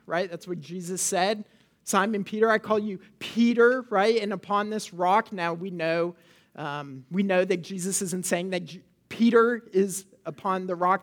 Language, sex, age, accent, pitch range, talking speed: English, male, 40-59, American, 175-230 Hz, 175 wpm